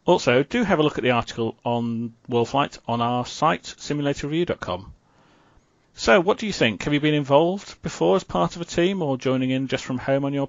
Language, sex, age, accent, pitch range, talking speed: English, male, 40-59, British, 115-150 Hz, 210 wpm